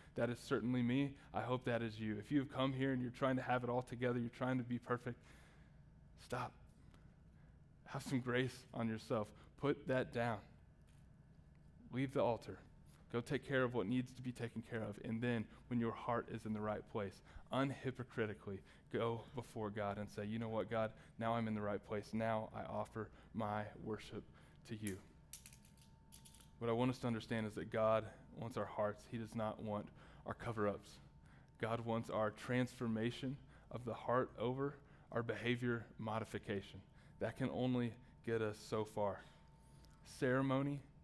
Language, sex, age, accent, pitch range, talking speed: English, male, 20-39, American, 110-130 Hz, 175 wpm